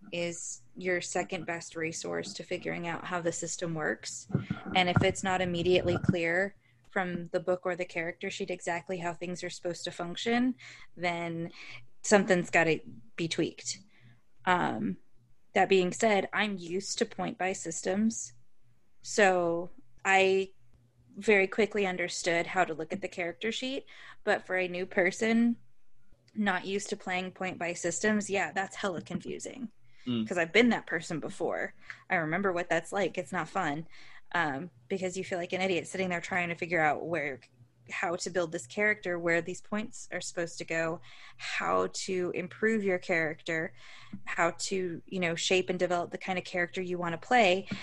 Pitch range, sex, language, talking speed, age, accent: 165-190 Hz, female, English, 170 wpm, 20-39, American